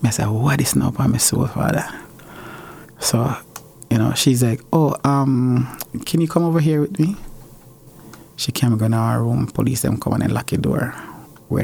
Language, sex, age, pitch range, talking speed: English, male, 20-39, 110-135 Hz, 190 wpm